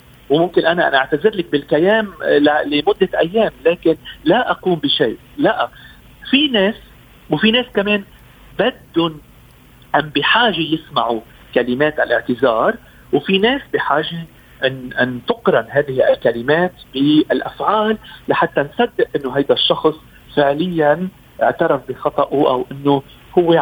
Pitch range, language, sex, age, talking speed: 145-230 Hz, Arabic, male, 50-69, 110 wpm